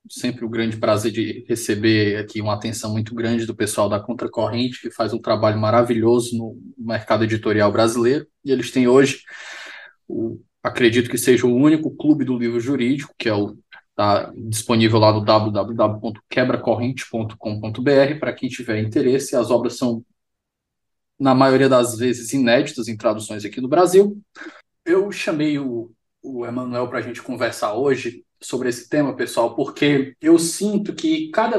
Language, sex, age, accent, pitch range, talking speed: Portuguese, male, 20-39, Brazilian, 120-195 Hz, 160 wpm